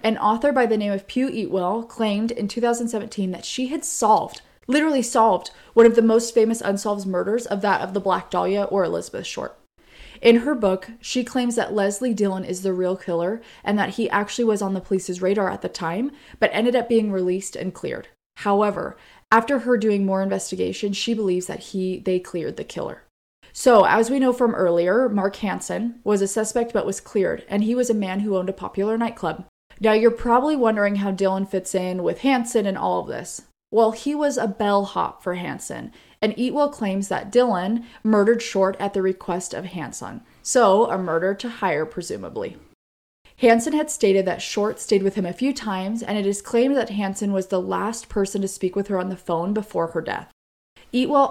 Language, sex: English, female